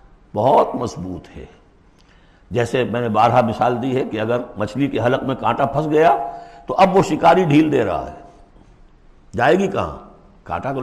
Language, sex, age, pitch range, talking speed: Urdu, male, 60-79, 95-140 Hz, 175 wpm